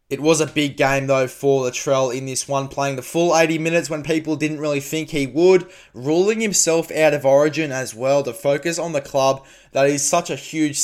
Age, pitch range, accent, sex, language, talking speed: 20-39, 130-160 Hz, Australian, male, English, 220 wpm